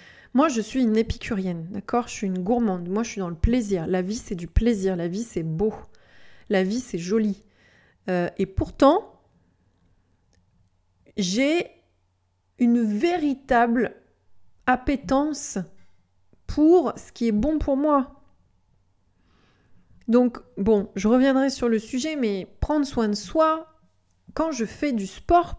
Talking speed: 140 wpm